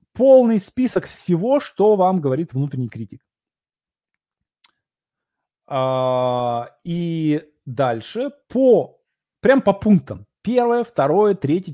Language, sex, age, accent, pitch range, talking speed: Russian, male, 20-39, native, 140-215 Hz, 85 wpm